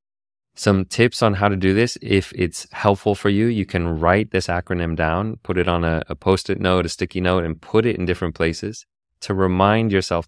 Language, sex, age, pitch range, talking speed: English, male, 20-39, 80-95 Hz, 215 wpm